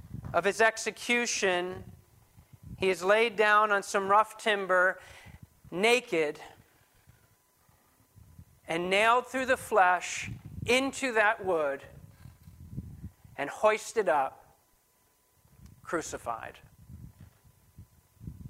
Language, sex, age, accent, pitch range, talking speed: English, male, 40-59, American, 150-230 Hz, 80 wpm